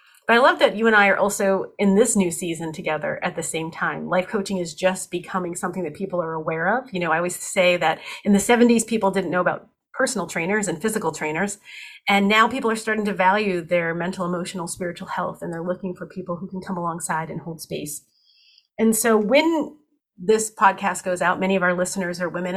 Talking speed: 225 wpm